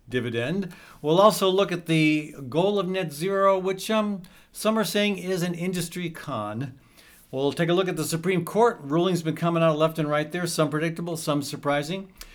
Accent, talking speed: American, 190 wpm